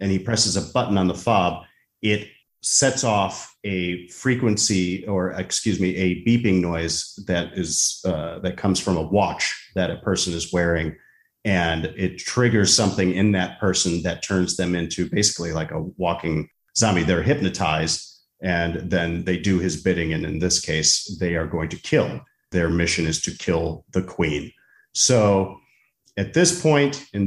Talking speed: 170 wpm